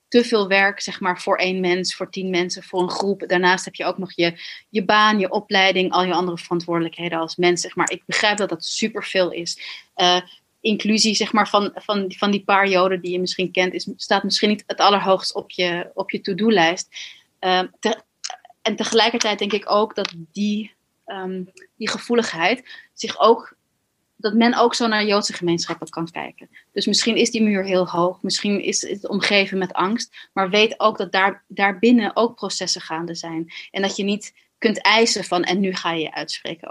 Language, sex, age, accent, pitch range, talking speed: Dutch, female, 30-49, Dutch, 180-215 Hz, 190 wpm